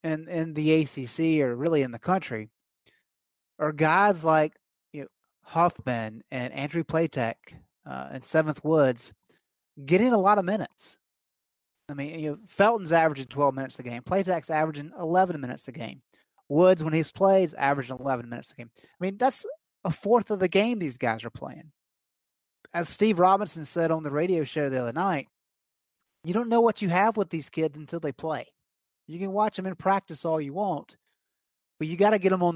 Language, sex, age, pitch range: English, male, 30-49, 145-185 Hz